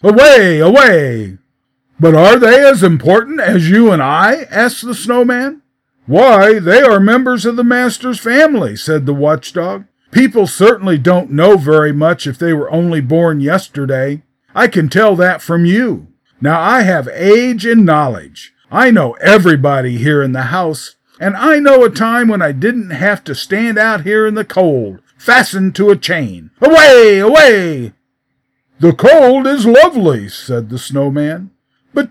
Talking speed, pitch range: 160 wpm, 150-225 Hz